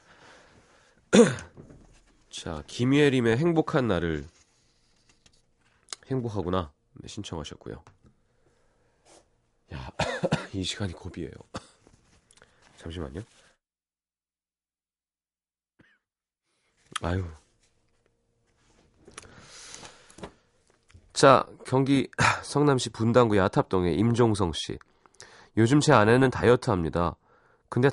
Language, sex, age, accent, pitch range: Korean, male, 40-59, native, 95-135 Hz